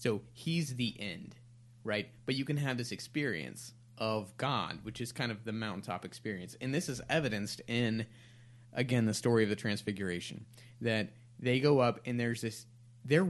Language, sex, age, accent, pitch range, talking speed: English, male, 30-49, American, 110-125 Hz, 175 wpm